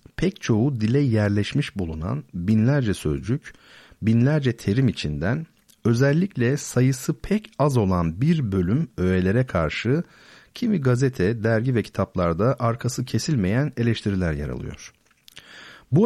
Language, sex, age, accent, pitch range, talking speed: Turkish, male, 50-69, native, 95-145 Hz, 110 wpm